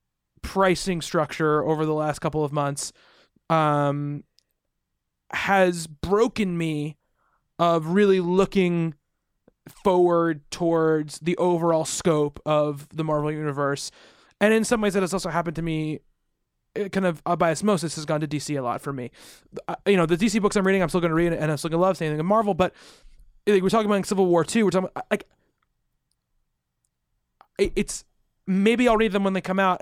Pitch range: 155-190 Hz